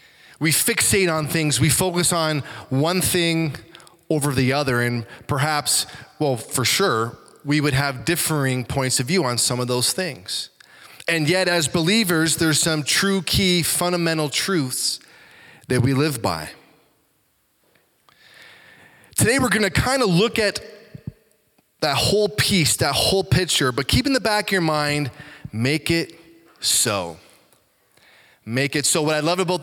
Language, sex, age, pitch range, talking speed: English, male, 20-39, 145-185 Hz, 150 wpm